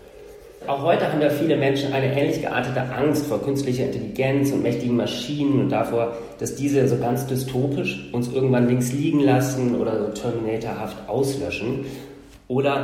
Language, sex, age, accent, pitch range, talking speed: German, male, 40-59, German, 120-145 Hz, 155 wpm